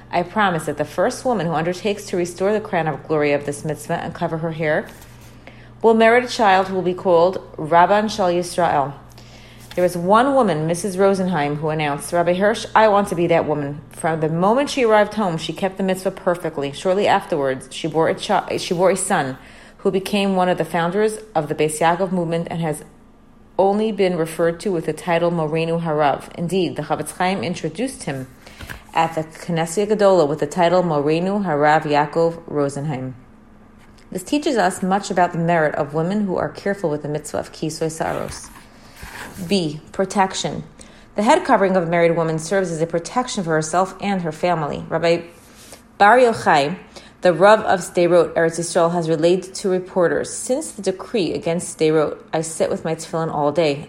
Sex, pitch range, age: female, 155-195 Hz, 30-49